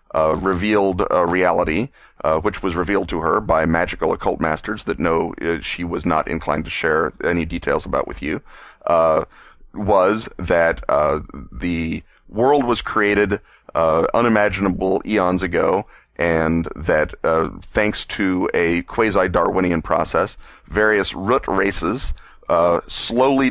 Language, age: English, 30-49